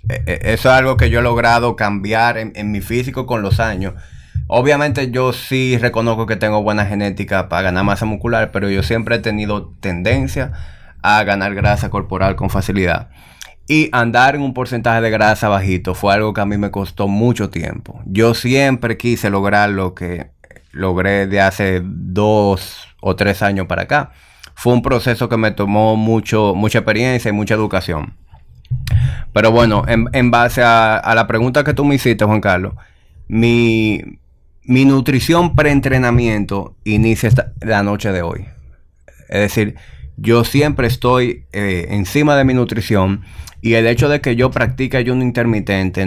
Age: 30-49